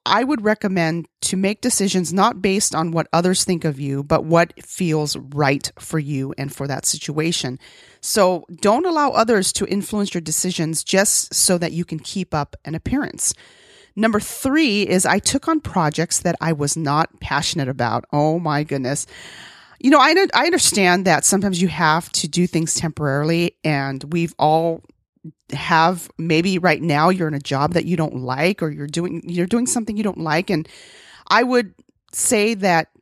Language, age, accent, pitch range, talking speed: English, 30-49, American, 150-190 Hz, 180 wpm